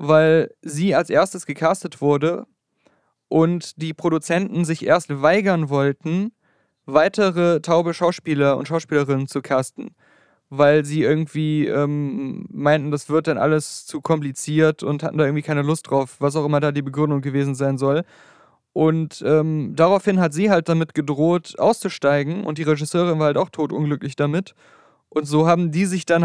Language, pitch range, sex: German, 150-175 Hz, male